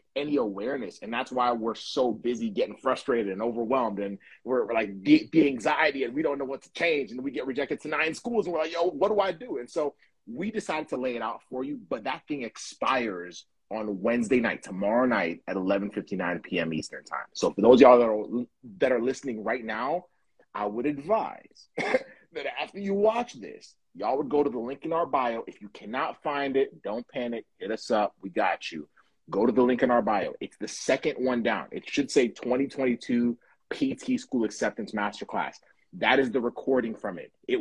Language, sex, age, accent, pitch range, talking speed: English, male, 30-49, American, 120-185 Hz, 210 wpm